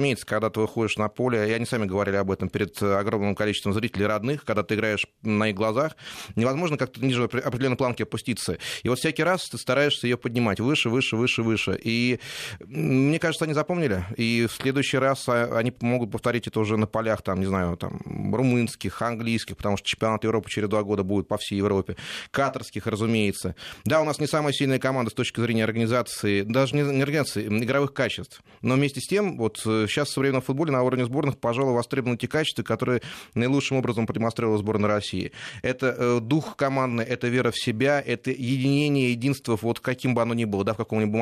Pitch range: 110-130 Hz